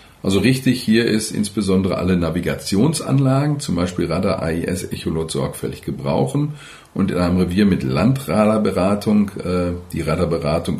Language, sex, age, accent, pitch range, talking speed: German, male, 40-59, German, 90-115 Hz, 130 wpm